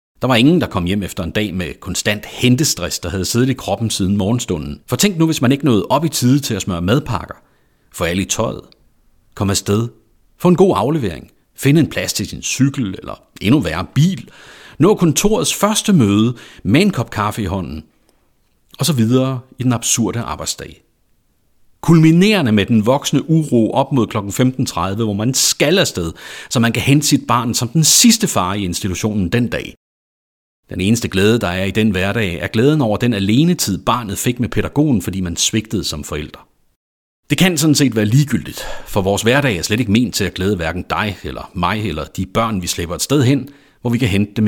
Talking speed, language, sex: 205 wpm, Danish, male